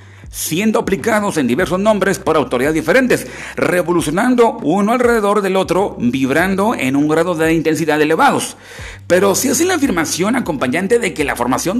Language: Spanish